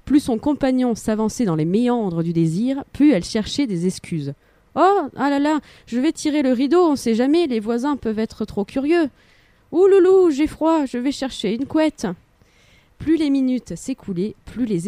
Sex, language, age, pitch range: female, French, 20-39, 200-285 Hz